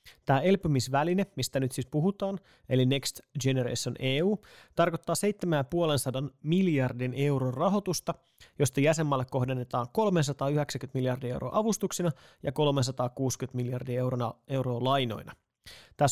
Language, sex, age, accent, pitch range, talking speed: Finnish, male, 30-49, native, 130-165 Hz, 110 wpm